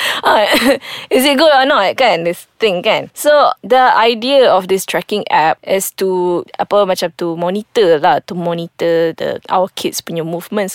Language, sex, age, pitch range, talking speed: English, female, 20-39, 185-255 Hz, 175 wpm